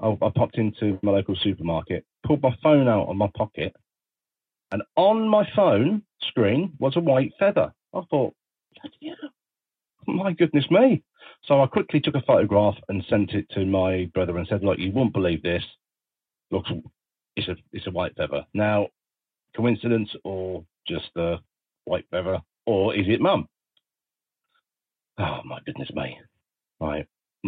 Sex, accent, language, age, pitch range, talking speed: male, British, English, 40-59, 95-135 Hz, 150 wpm